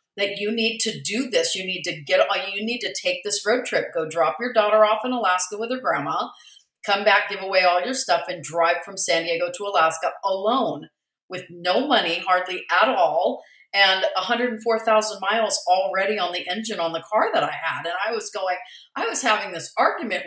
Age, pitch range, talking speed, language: 40-59, 200-265 Hz, 210 wpm, English